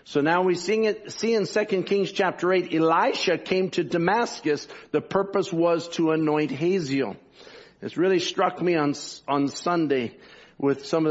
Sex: male